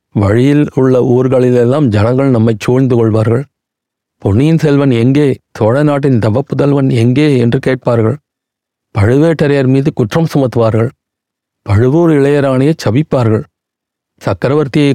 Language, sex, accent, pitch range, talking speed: Tamil, male, native, 115-140 Hz, 95 wpm